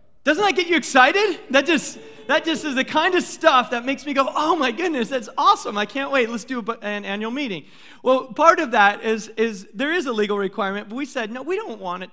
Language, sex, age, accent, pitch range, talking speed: English, male, 30-49, American, 175-225 Hz, 245 wpm